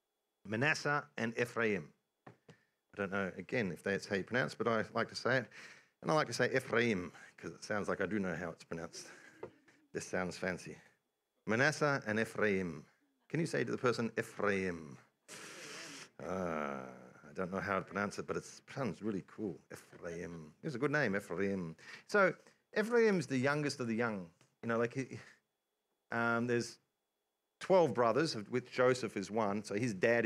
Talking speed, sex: 175 wpm, male